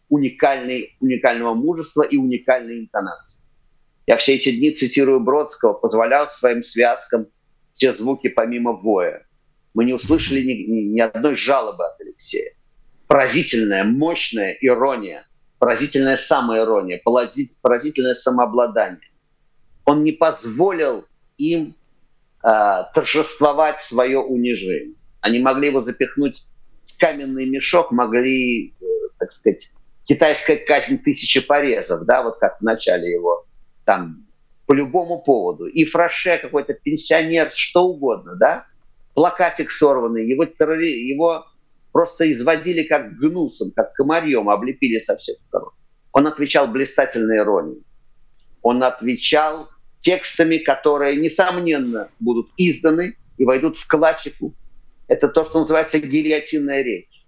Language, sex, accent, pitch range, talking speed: Russian, male, native, 125-165 Hz, 115 wpm